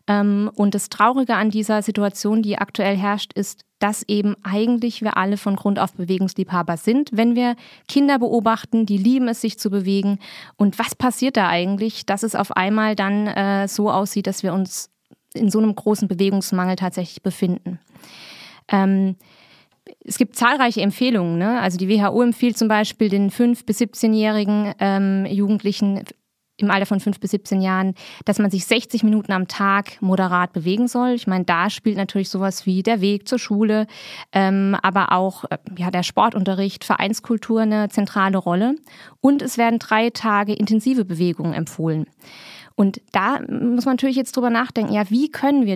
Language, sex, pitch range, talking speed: German, female, 195-235 Hz, 170 wpm